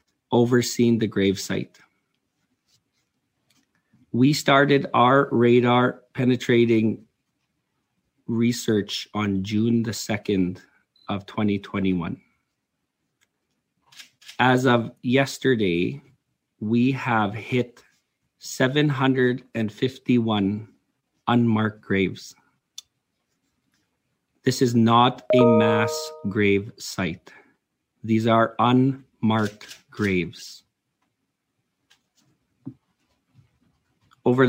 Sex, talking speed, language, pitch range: male, 70 wpm, English, 105-125 Hz